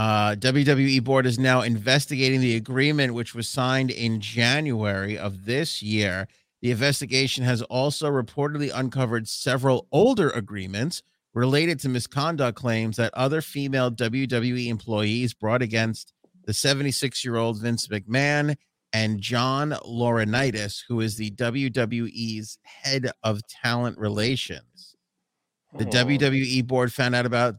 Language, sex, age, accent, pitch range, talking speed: English, male, 30-49, American, 110-135 Hz, 125 wpm